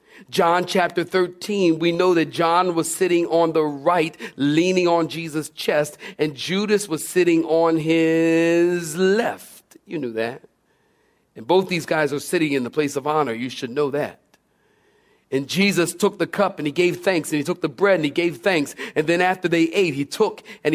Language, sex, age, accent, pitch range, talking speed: English, male, 40-59, American, 155-215 Hz, 195 wpm